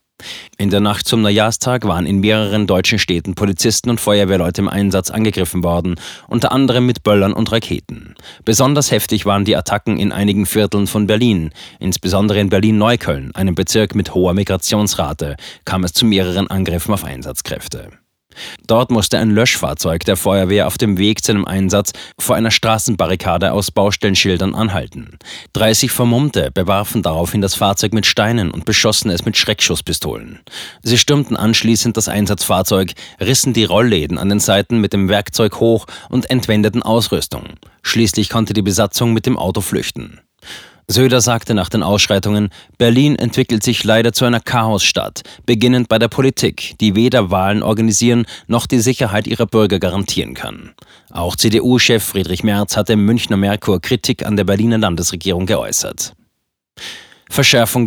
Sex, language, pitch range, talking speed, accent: male, German, 95-115 Hz, 150 wpm, German